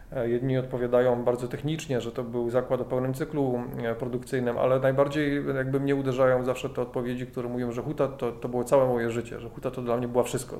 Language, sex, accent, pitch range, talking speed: Polish, male, native, 120-140 Hz, 210 wpm